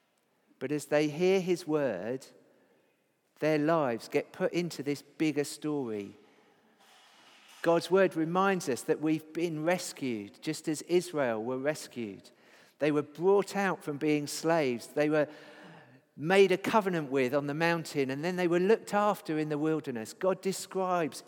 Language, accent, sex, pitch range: English, British, male, 130-170 Hz